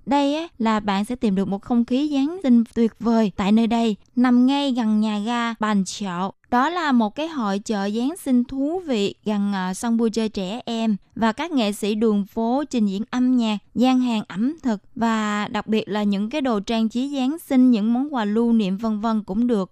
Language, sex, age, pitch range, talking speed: Vietnamese, female, 20-39, 215-255 Hz, 225 wpm